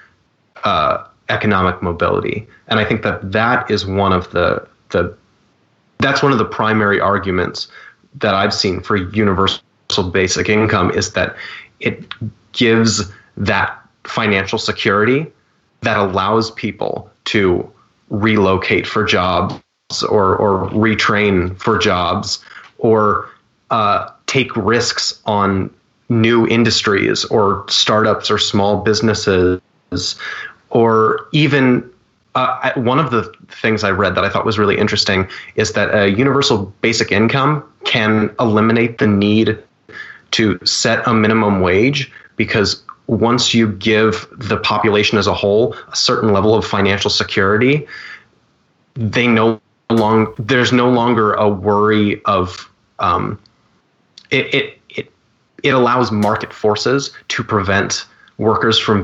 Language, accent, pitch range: English, American, 100-115 Hz